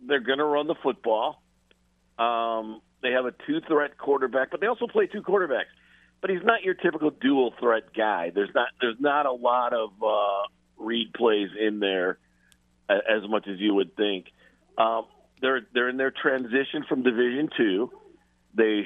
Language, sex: English, male